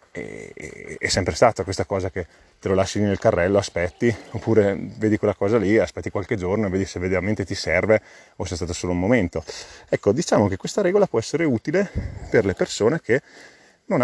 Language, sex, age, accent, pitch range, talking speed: Italian, male, 30-49, native, 90-115 Hz, 195 wpm